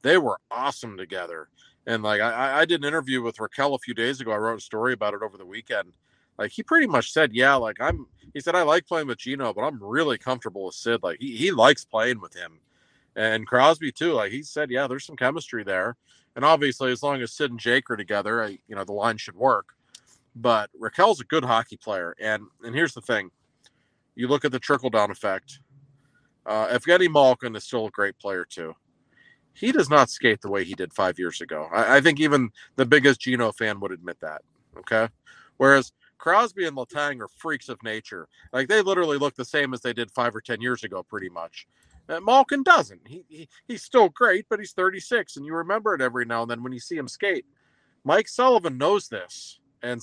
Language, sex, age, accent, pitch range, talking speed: English, male, 40-59, American, 115-155 Hz, 225 wpm